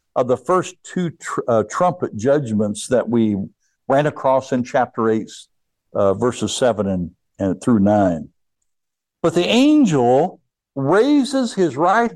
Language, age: English, 60-79